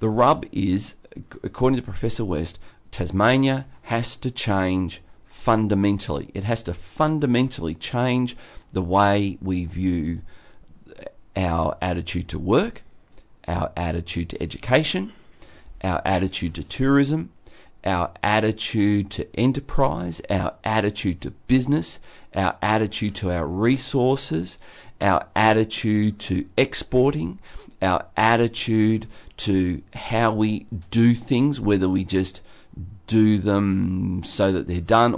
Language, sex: English, male